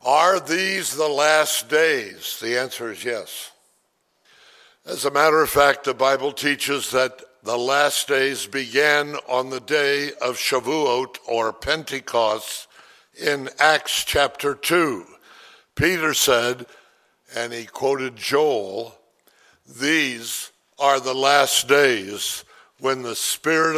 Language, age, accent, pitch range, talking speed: English, 60-79, American, 130-150 Hz, 120 wpm